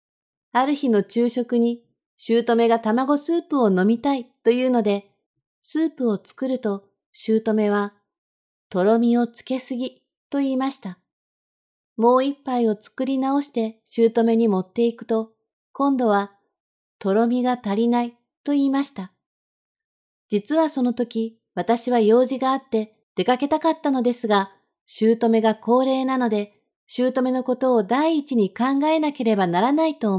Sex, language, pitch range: female, Japanese, 220-265 Hz